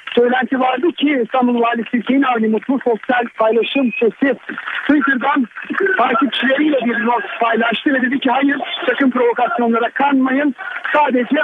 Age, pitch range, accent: 50-69, 230-270 Hz, native